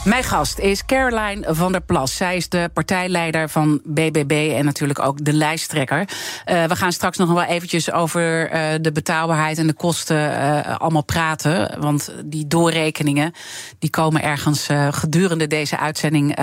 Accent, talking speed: Dutch, 150 wpm